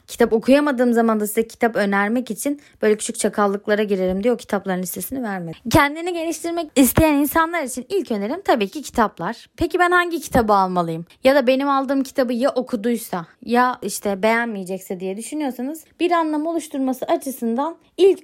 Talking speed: 160 wpm